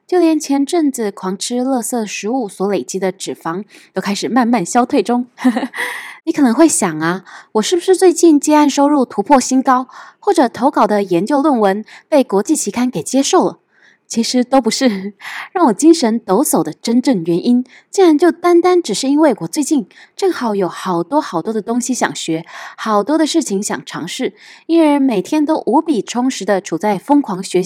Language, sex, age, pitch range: Chinese, female, 20-39, 200-300 Hz